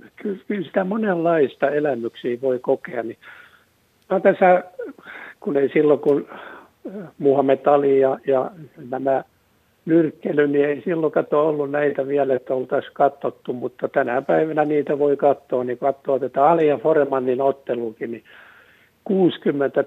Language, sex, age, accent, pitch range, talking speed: Finnish, male, 60-79, native, 130-165 Hz, 125 wpm